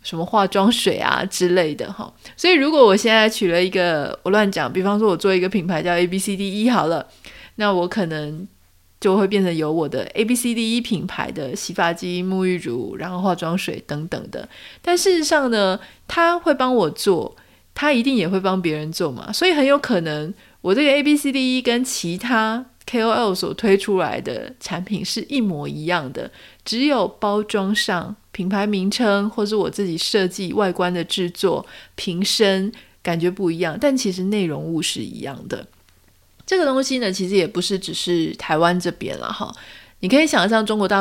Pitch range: 180-235 Hz